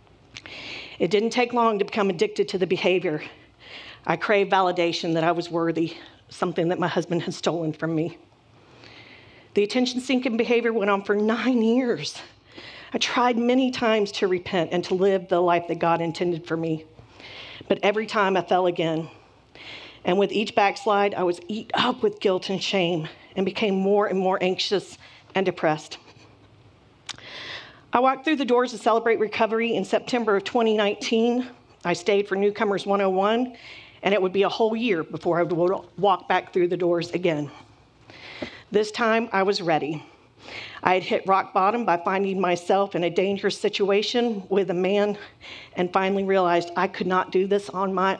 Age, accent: 40-59, American